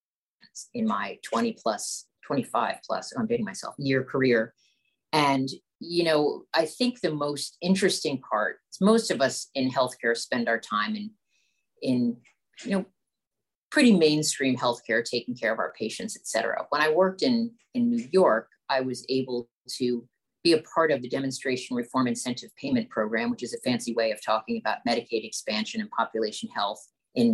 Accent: American